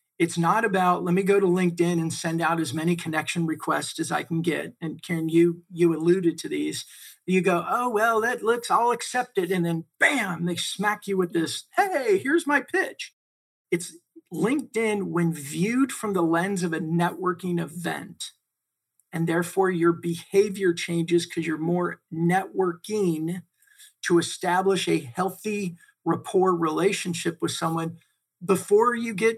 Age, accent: 50-69, American